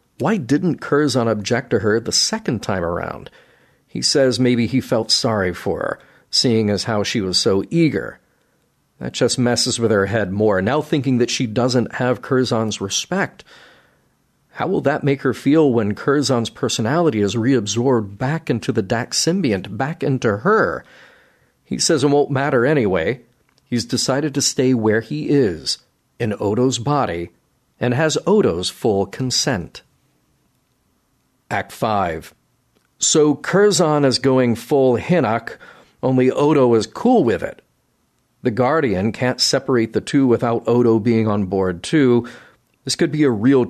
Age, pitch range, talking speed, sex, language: 50-69, 110-140 Hz, 150 wpm, male, English